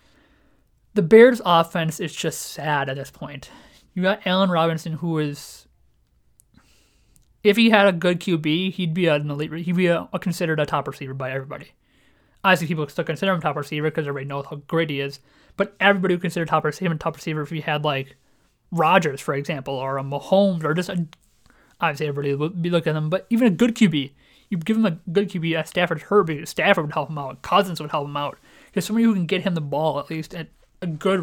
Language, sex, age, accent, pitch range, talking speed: English, male, 30-49, American, 150-185 Hz, 220 wpm